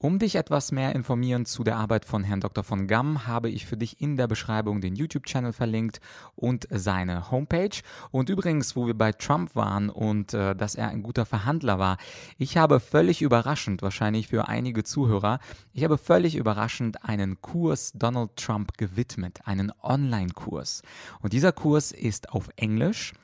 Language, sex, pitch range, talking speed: German, male, 105-135 Hz, 170 wpm